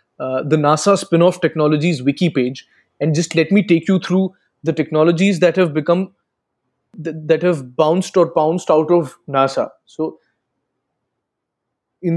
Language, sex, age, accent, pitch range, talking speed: Hindi, male, 20-39, native, 145-175 Hz, 155 wpm